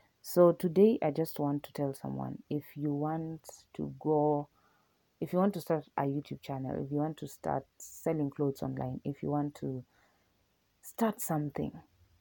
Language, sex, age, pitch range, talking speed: English, female, 30-49, 135-155 Hz, 170 wpm